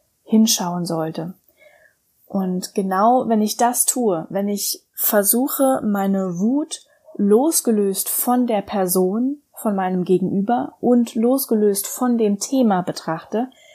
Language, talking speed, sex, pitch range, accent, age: German, 115 wpm, female, 195-245 Hz, German, 10-29